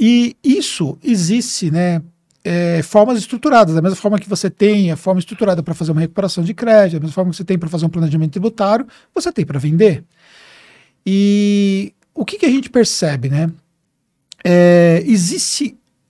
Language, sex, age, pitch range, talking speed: Portuguese, male, 50-69, 165-215 Hz, 175 wpm